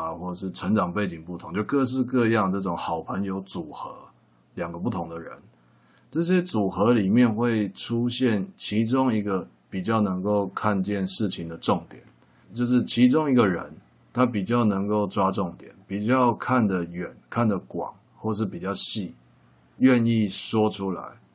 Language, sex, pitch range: Chinese, male, 85-115 Hz